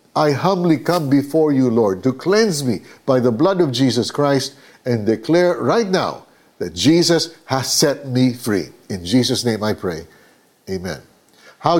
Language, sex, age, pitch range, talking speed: Filipino, male, 50-69, 130-185 Hz, 165 wpm